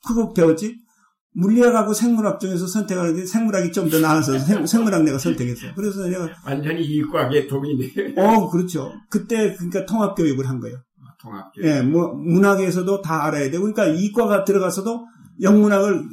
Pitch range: 140-195 Hz